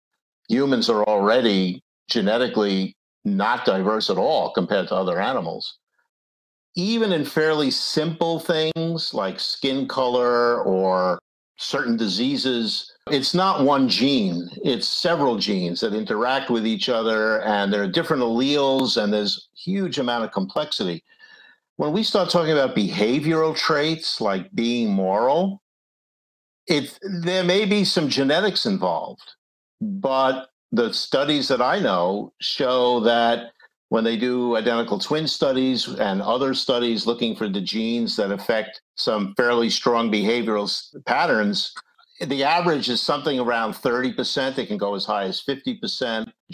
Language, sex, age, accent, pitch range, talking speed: English, male, 50-69, American, 110-165 Hz, 135 wpm